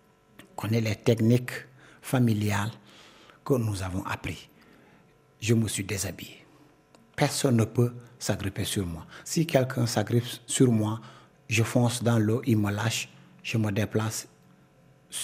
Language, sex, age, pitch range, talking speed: French, male, 60-79, 105-130 Hz, 140 wpm